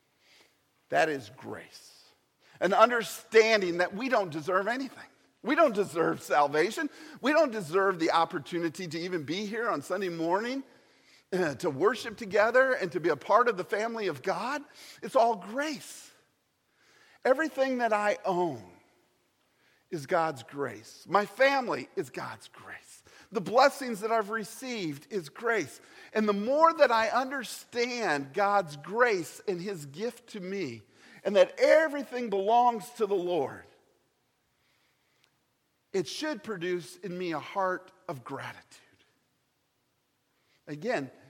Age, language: 50-69, English